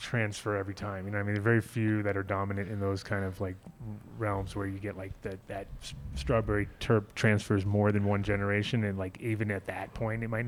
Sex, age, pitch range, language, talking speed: male, 30-49, 105-120 Hz, English, 245 wpm